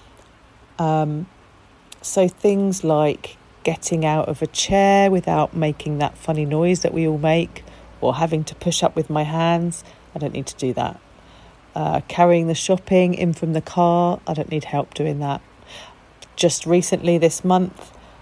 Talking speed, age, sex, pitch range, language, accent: 165 wpm, 40-59, female, 140-170 Hz, English, British